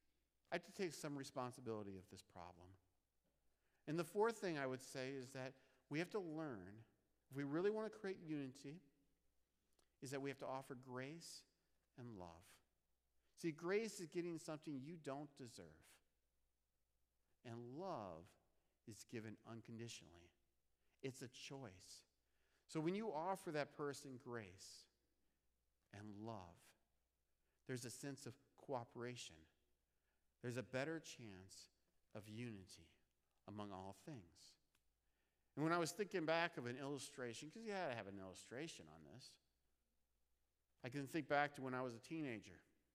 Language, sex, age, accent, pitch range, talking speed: English, male, 50-69, American, 90-145 Hz, 145 wpm